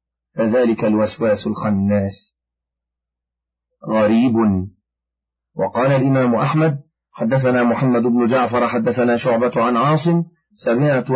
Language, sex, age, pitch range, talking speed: Arabic, male, 40-59, 110-140 Hz, 85 wpm